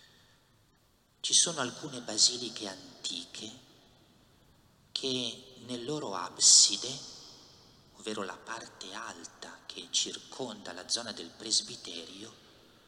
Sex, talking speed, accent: male, 90 wpm, native